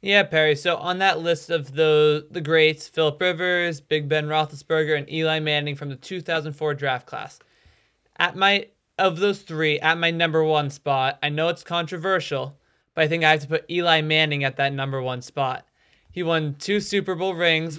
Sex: male